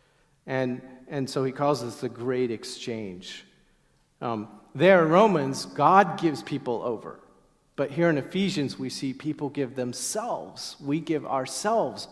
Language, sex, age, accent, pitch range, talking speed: English, male, 40-59, American, 120-150 Hz, 145 wpm